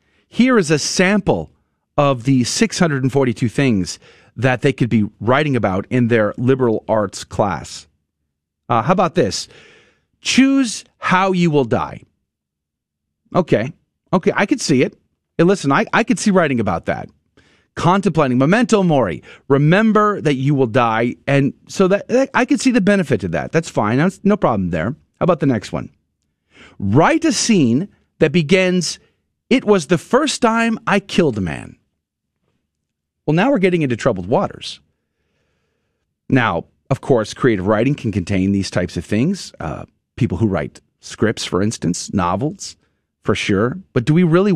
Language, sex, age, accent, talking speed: English, male, 40-59, American, 160 wpm